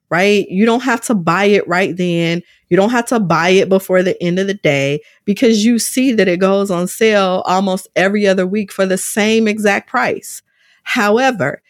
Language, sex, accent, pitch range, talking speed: English, female, American, 160-210 Hz, 200 wpm